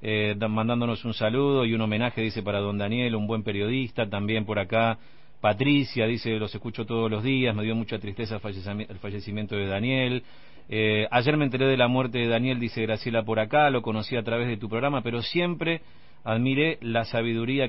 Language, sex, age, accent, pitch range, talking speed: Spanish, male, 40-59, Argentinian, 110-135 Hz, 195 wpm